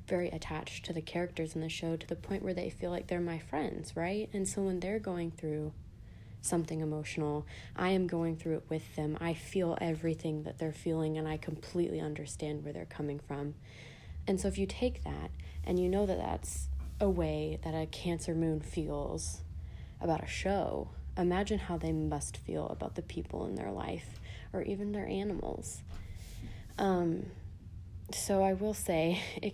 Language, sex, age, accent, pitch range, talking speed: English, female, 20-39, American, 145-175 Hz, 185 wpm